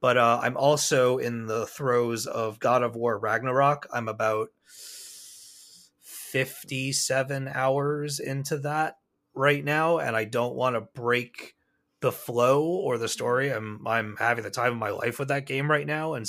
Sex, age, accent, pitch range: male, 30-49, American, 120-150 Hz